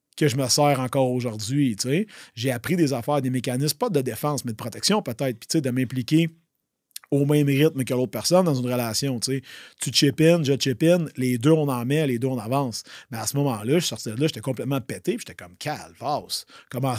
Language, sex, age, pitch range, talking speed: French, male, 30-49, 120-155 Hz, 245 wpm